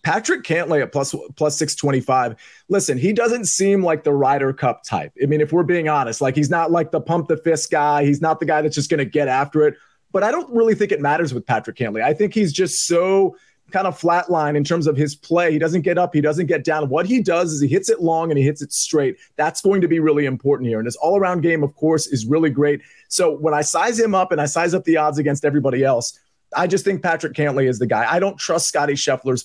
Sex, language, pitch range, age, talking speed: male, English, 145-175 Hz, 30-49, 265 wpm